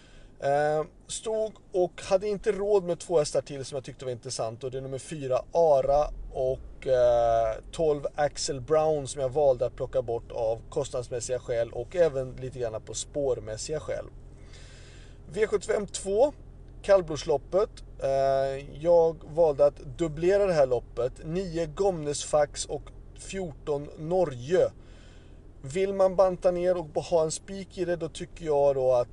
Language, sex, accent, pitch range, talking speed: Swedish, male, native, 125-165 Hz, 145 wpm